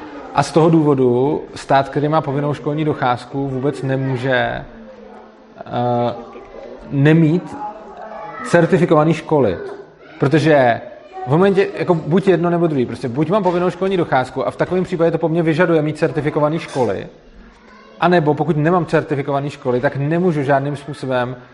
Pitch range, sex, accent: 140-165 Hz, male, native